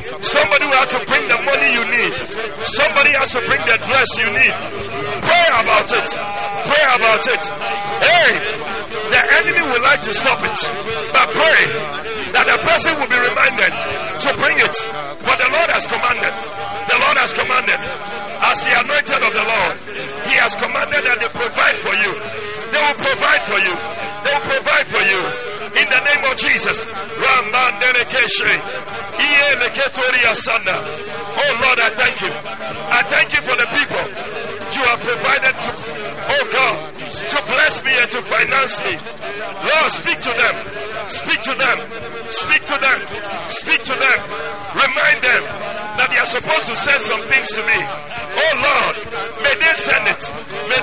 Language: English